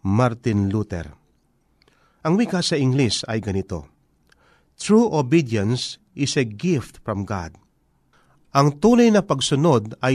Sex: male